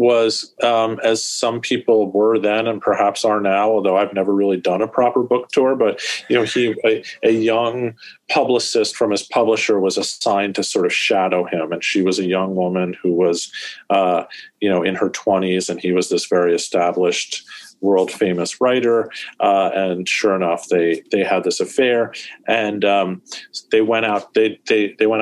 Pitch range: 95-115 Hz